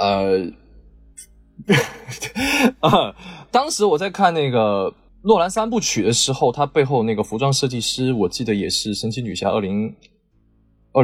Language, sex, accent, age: Chinese, male, native, 20-39